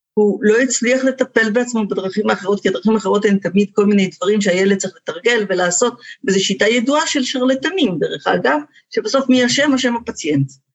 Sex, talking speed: female, 175 wpm